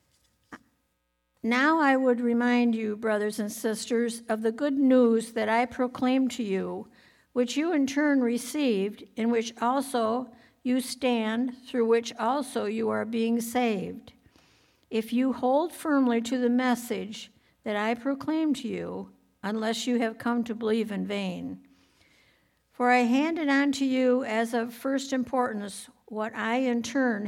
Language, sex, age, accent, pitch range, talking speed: English, female, 60-79, American, 220-260 Hz, 150 wpm